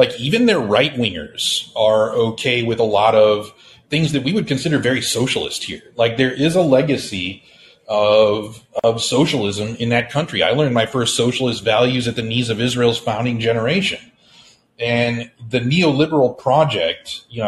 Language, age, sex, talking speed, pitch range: English, 30-49, male, 160 wpm, 105-130 Hz